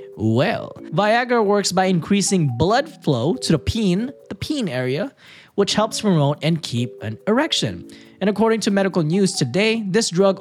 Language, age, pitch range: English, 20-39, 120-195 Hz